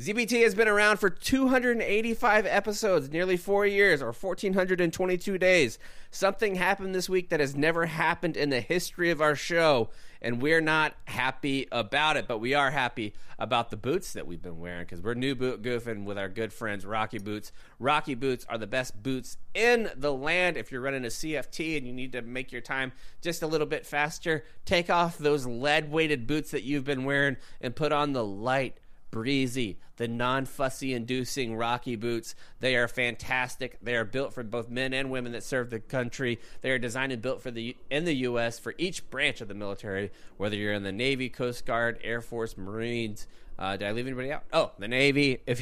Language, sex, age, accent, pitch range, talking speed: English, male, 30-49, American, 115-155 Hz, 200 wpm